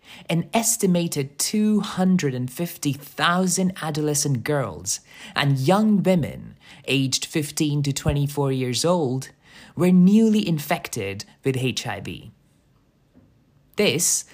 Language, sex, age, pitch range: English, male, 20-39, 125-170 Hz